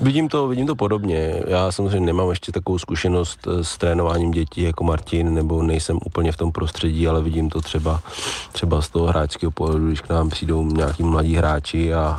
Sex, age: male, 30-49